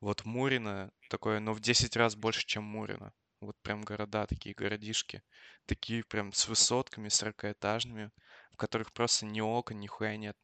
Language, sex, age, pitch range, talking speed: Russian, male, 20-39, 105-115 Hz, 170 wpm